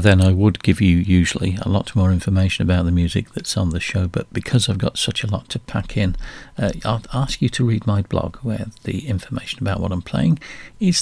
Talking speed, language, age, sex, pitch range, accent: 235 wpm, English, 50-69, male, 95-125 Hz, British